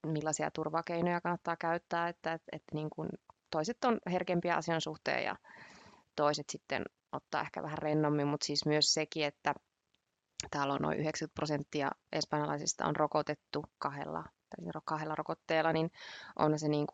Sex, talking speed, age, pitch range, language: female, 145 wpm, 20-39, 150-170 Hz, Finnish